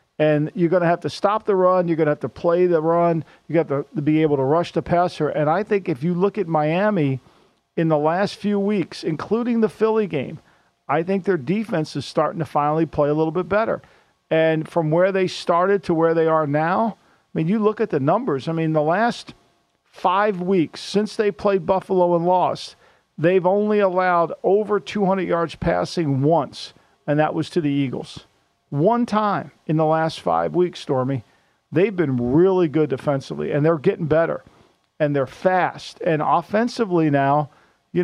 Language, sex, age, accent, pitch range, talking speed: English, male, 50-69, American, 155-200 Hz, 195 wpm